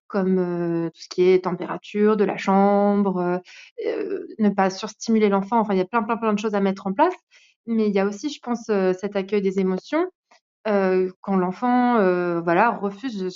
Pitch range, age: 190-230 Hz, 20-39